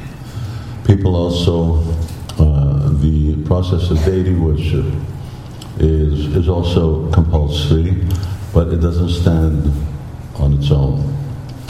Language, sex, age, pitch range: Hungarian, male, 60-79, 75-90 Hz